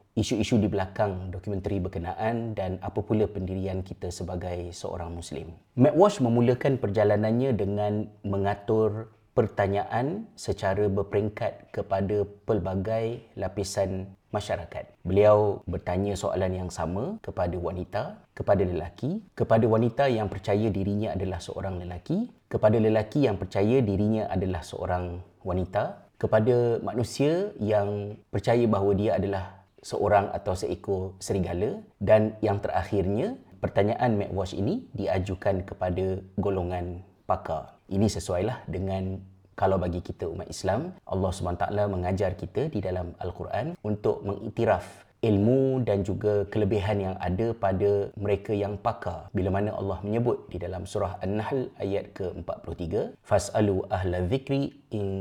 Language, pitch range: Malay, 95-110 Hz